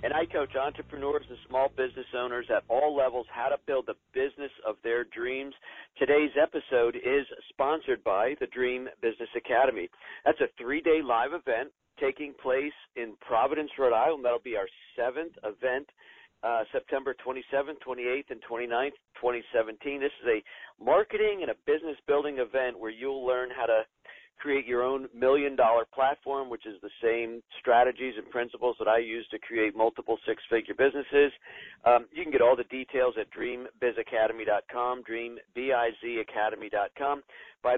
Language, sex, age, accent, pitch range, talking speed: English, male, 50-69, American, 115-165 Hz, 155 wpm